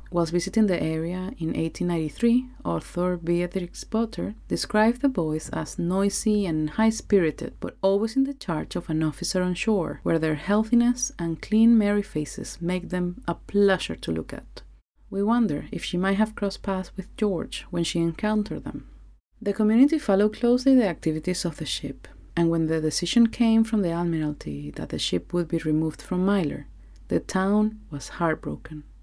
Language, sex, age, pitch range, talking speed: English, female, 30-49, 160-205 Hz, 170 wpm